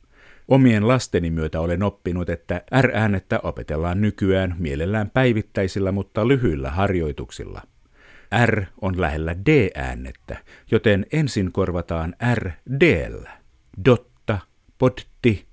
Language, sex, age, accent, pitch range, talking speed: Finnish, male, 50-69, native, 85-125 Hz, 95 wpm